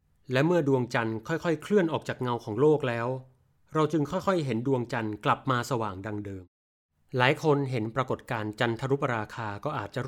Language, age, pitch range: Thai, 30-49, 120-155 Hz